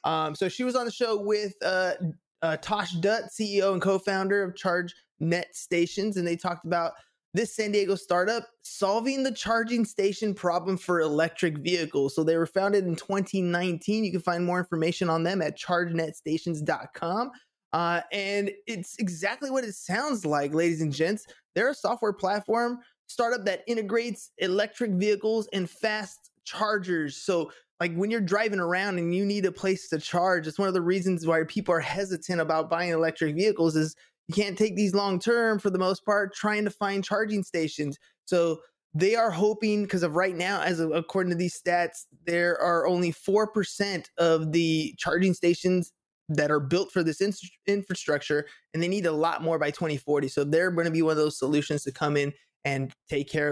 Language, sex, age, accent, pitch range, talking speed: English, male, 20-39, American, 165-205 Hz, 185 wpm